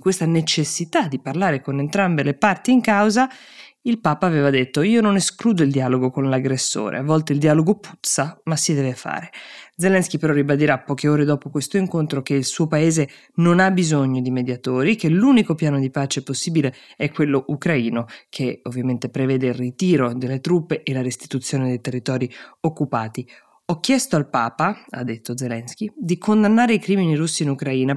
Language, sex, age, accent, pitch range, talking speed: Italian, female, 20-39, native, 135-190 Hz, 180 wpm